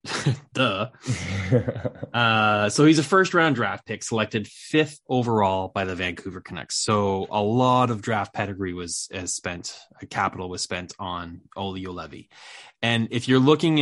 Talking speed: 150 wpm